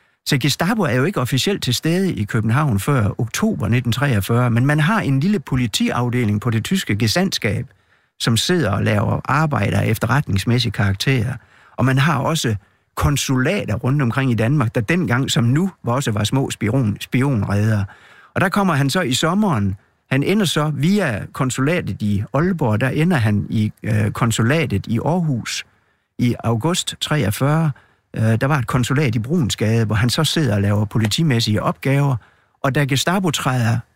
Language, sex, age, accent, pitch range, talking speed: Danish, male, 60-79, native, 110-150 Hz, 160 wpm